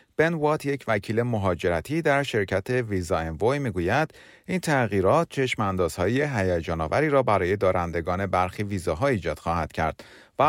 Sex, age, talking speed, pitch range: male, 30-49, 160 wpm, 90-130 Hz